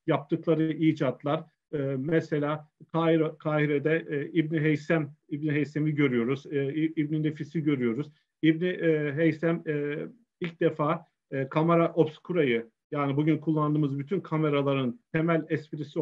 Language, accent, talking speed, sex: Turkish, native, 95 wpm, male